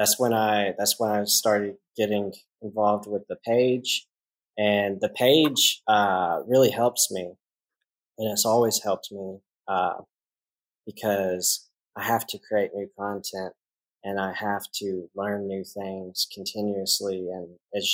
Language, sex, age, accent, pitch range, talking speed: English, male, 20-39, American, 95-110 Hz, 140 wpm